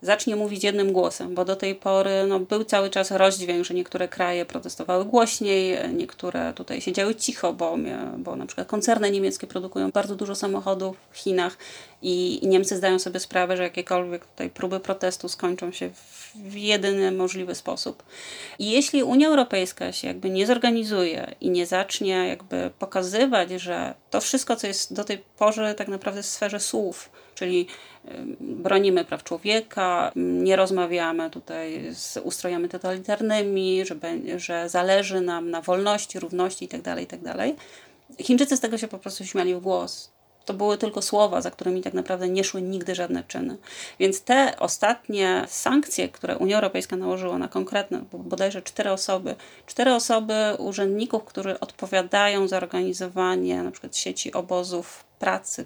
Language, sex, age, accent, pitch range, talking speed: Polish, female, 30-49, native, 180-215 Hz, 155 wpm